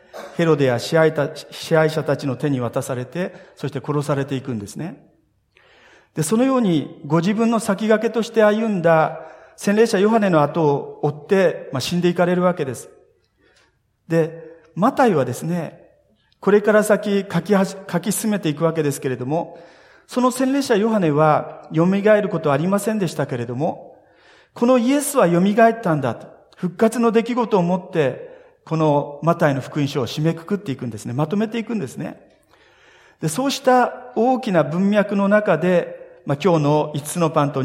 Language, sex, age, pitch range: Japanese, male, 40-59, 145-200 Hz